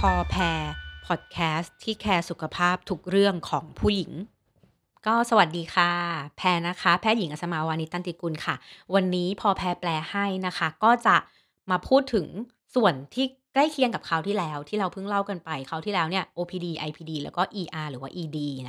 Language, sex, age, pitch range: Thai, female, 30-49, 160-210 Hz